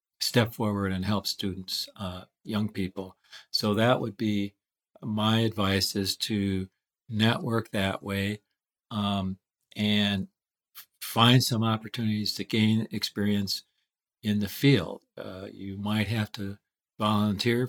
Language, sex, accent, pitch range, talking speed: English, male, American, 95-115 Hz, 120 wpm